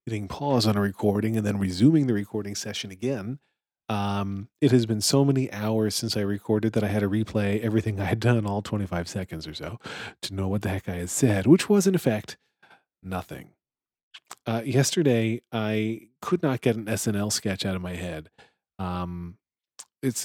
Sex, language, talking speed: male, English, 190 wpm